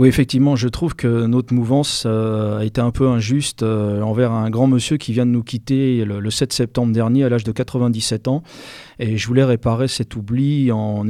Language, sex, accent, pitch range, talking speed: French, male, French, 110-130 Hz, 215 wpm